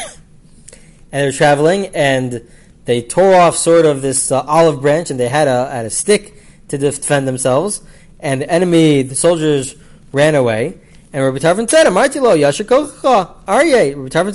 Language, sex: English, male